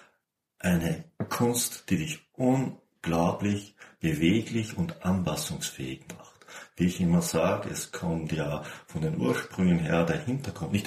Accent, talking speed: German, 125 wpm